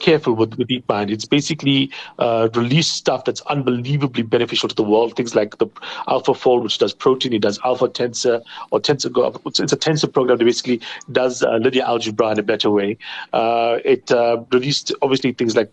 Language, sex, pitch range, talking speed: English, male, 115-145 Hz, 185 wpm